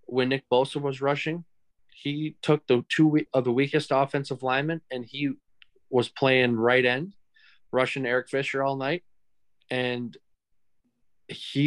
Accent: American